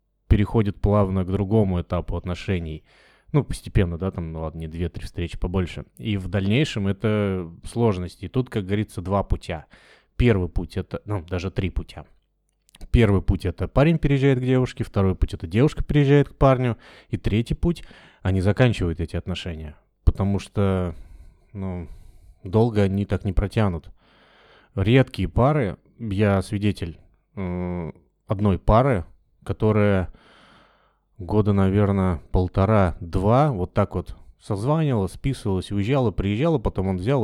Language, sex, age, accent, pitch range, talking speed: Russian, male, 20-39, native, 90-110 Hz, 135 wpm